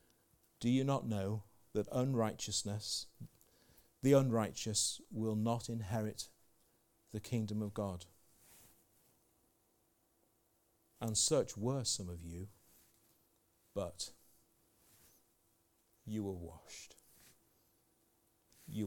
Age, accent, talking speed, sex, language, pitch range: 50-69, British, 85 wpm, male, English, 100-120 Hz